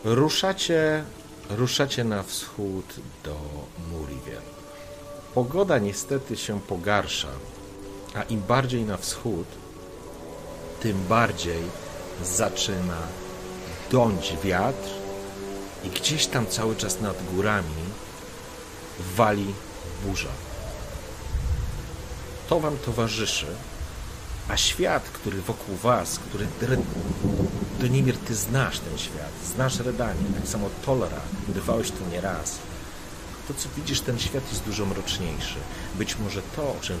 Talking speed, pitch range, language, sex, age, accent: 105 wpm, 85-115 Hz, Polish, male, 40-59, native